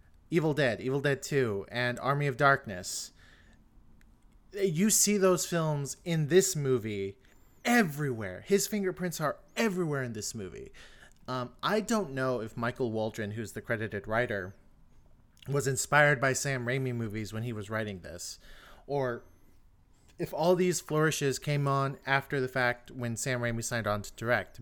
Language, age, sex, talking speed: English, 30-49, male, 155 wpm